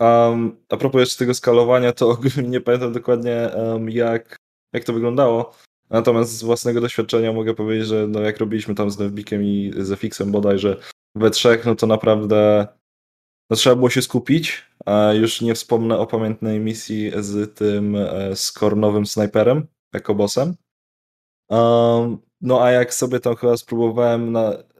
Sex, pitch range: male, 105-120 Hz